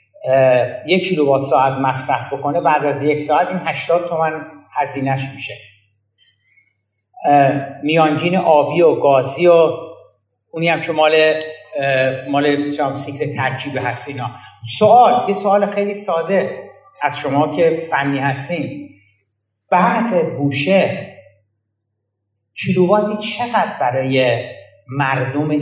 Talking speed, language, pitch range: 100 wpm, Persian, 130-170 Hz